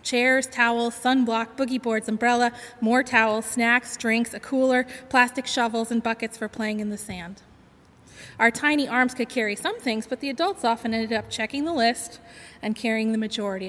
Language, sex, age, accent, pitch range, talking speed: English, female, 20-39, American, 220-255 Hz, 180 wpm